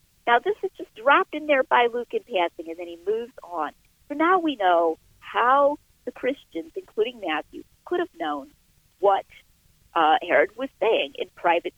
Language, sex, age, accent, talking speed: English, female, 50-69, American, 180 wpm